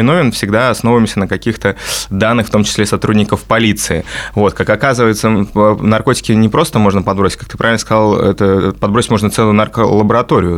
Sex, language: male, Russian